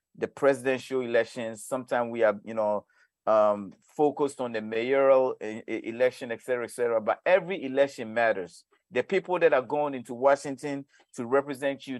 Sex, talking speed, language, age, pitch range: male, 165 wpm, English, 50-69, 120-150 Hz